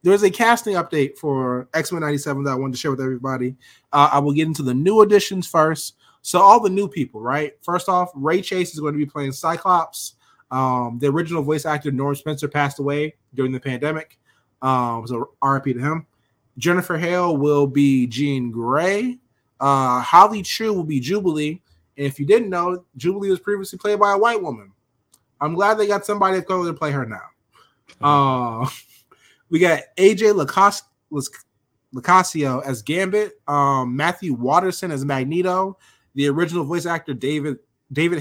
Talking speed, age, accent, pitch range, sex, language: 180 wpm, 20-39, American, 135-180 Hz, male, English